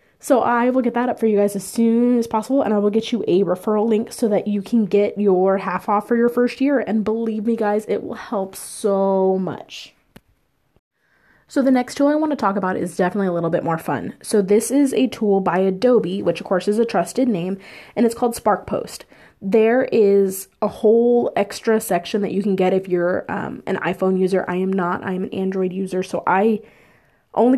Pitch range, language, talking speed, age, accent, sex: 190-235 Hz, English, 225 wpm, 20-39, American, female